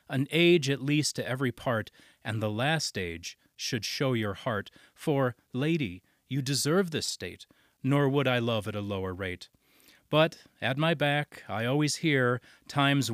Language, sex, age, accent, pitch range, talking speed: English, male, 30-49, American, 115-145 Hz, 170 wpm